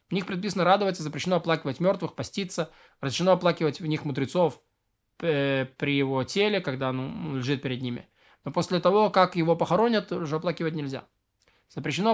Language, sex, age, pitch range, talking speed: Russian, male, 20-39, 140-175 Hz, 165 wpm